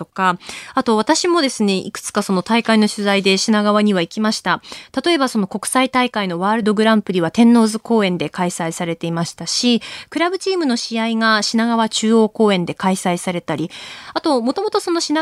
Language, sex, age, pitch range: Japanese, female, 20-39, 195-275 Hz